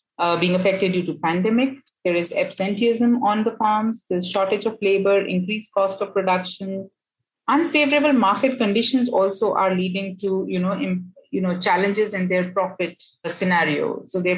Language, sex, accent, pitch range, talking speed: English, female, Indian, 175-210 Hz, 160 wpm